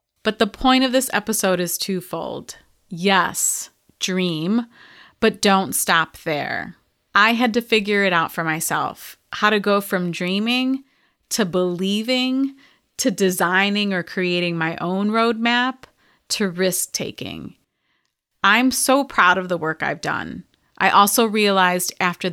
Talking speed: 135 wpm